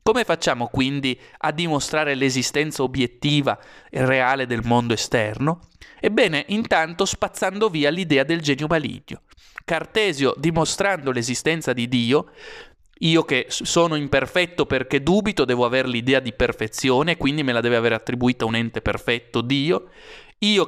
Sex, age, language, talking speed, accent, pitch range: male, 30-49, Italian, 135 wpm, native, 120-155 Hz